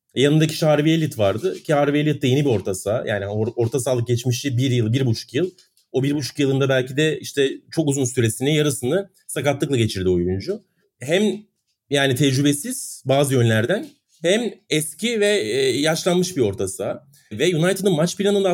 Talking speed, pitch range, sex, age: 170 wpm, 130-180 Hz, male, 40-59